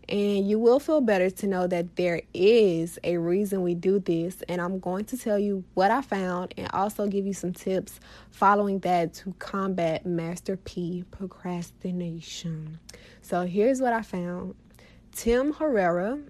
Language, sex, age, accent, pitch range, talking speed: English, female, 20-39, American, 175-200 Hz, 160 wpm